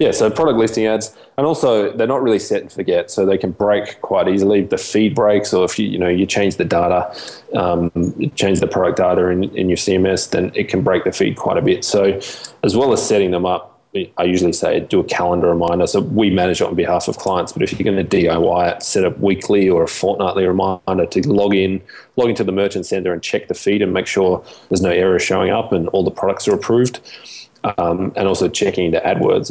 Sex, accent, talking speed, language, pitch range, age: male, Australian, 240 wpm, English, 90-110 Hz, 20-39